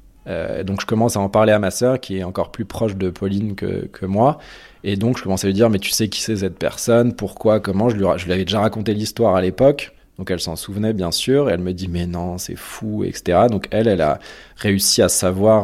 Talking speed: 260 wpm